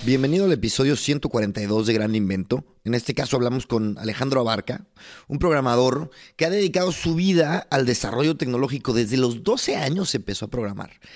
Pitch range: 120-160 Hz